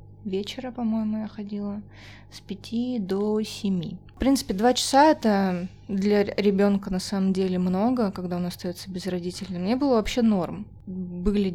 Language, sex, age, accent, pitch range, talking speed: Russian, female, 20-39, native, 180-210 Hz, 150 wpm